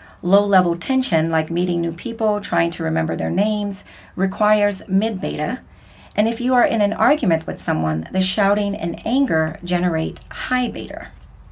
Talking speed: 145 wpm